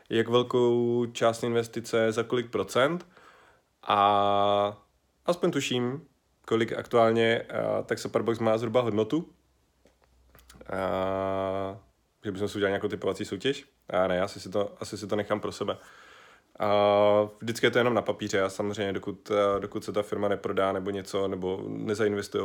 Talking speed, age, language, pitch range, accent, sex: 150 wpm, 20-39, Czech, 100-120 Hz, native, male